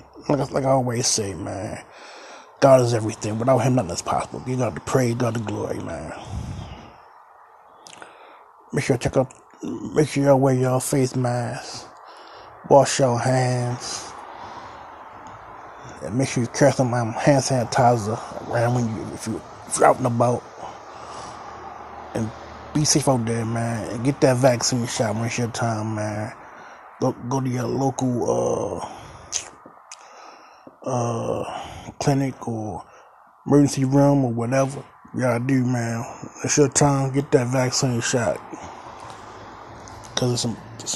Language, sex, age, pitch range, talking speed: English, male, 20-39, 115-135 Hz, 140 wpm